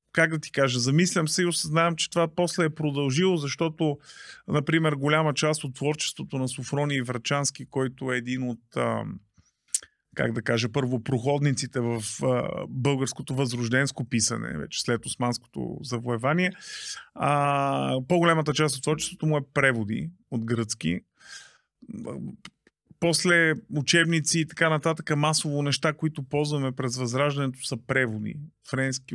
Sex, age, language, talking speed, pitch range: male, 30-49, Bulgarian, 130 wpm, 125-160 Hz